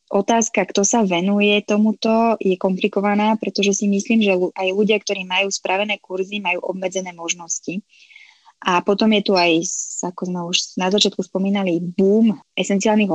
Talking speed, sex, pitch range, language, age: 150 wpm, female, 180-210 Hz, Slovak, 20-39